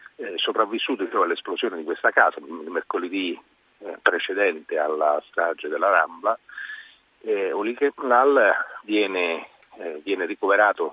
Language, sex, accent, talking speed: Italian, male, native, 120 wpm